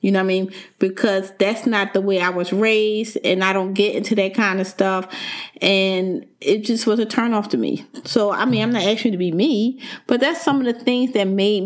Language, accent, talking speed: English, American, 245 wpm